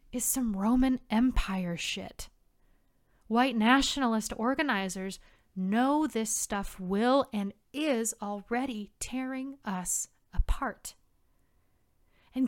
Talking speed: 90 wpm